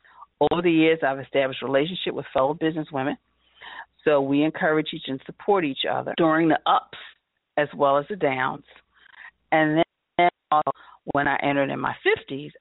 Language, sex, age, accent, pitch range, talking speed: English, female, 40-59, American, 135-175 Hz, 165 wpm